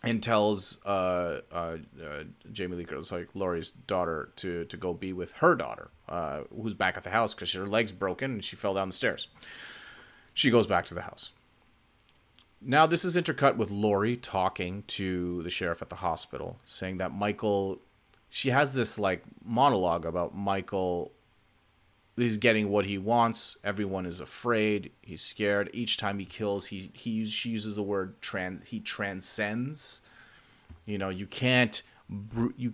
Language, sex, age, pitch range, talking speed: English, male, 30-49, 95-115 Hz, 165 wpm